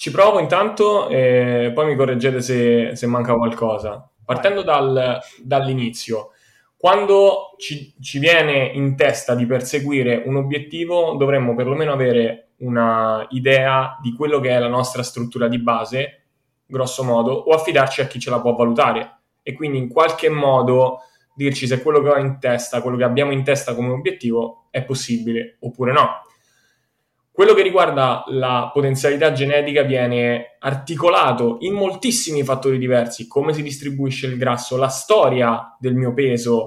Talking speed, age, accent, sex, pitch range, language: 150 wpm, 20-39, native, male, 120-145 Hz, Italian